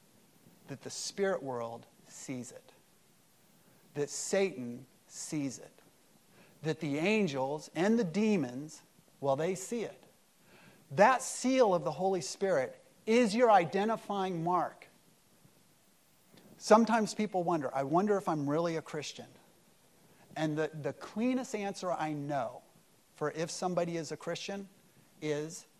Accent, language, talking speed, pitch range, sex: American, English, 125 wpm, 145-200 Hz, male